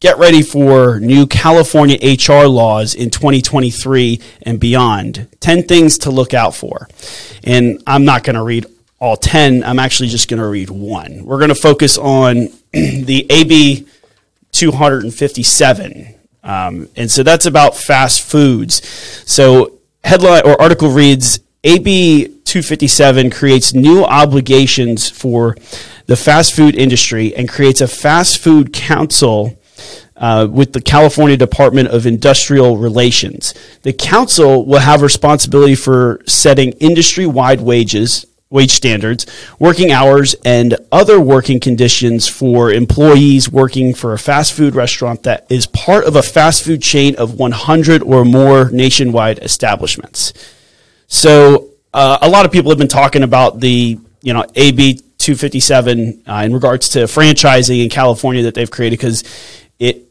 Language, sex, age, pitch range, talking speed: English, male, 30-49, 120-145 Hz, 140 wpm